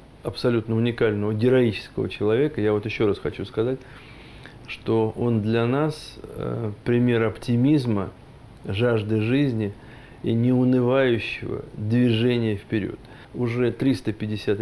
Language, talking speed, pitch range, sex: Russian, 100 wpm, 105-120 Hz, male